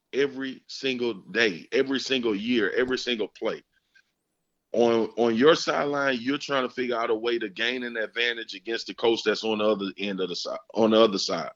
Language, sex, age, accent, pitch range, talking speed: English, male, 30-49, American, 115-140 Hz, 200 wpm